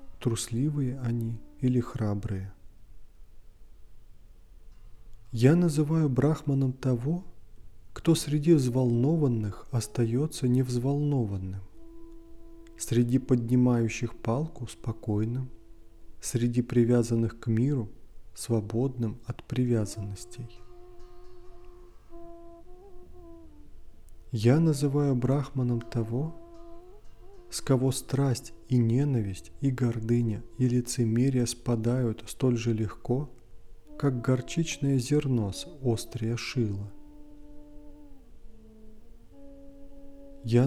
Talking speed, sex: 70 wpm, male